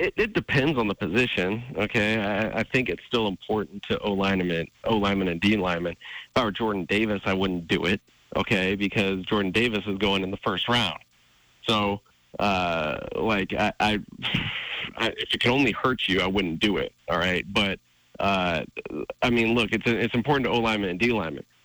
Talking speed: 185 wpm